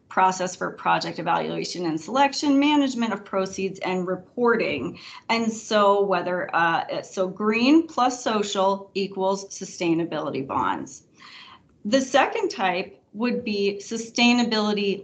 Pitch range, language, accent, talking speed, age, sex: 185-225 Hz, English, American, 110 wpm, 30-49, female